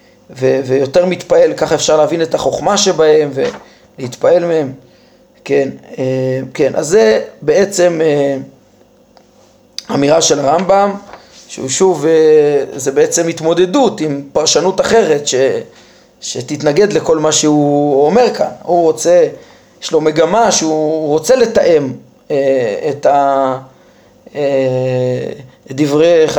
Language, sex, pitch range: Hebrew, male, 140-175 Hz